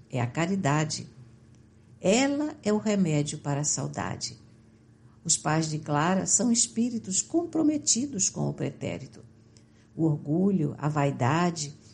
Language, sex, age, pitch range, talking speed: Portuguese, female, 60-79, 120-195 Hz, 120 wpm